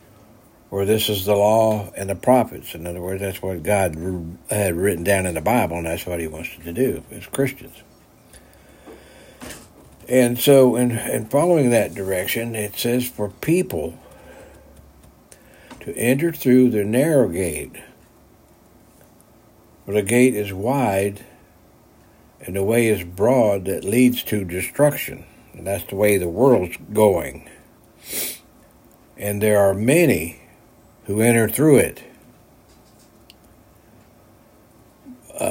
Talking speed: 130 wpm